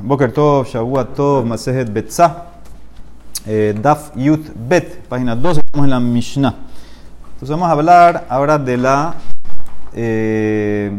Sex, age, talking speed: male, 30-49, 130 wpm